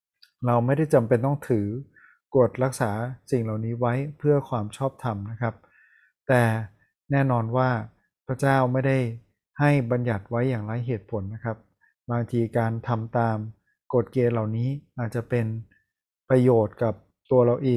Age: 20-39